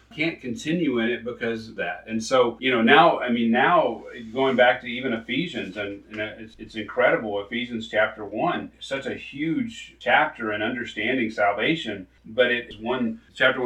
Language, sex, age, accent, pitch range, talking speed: English, male, 40-59, American, 110-135 Hz, 170 wpm